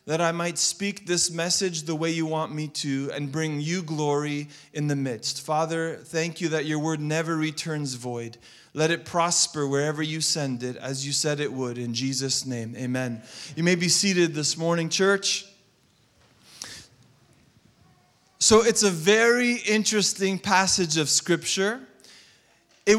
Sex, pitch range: male, 155-185 Hz